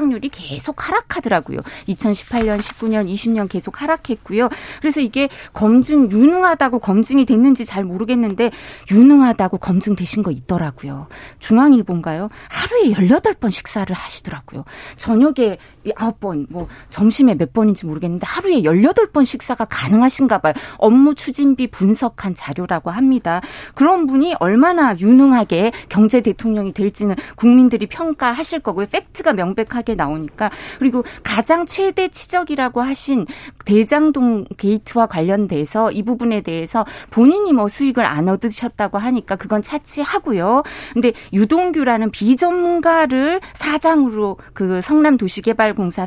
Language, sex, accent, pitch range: Korean, female, native, 200-280 Hz